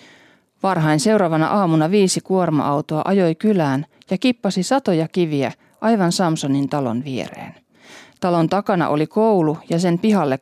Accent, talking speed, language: native, 125 wpm, Finnish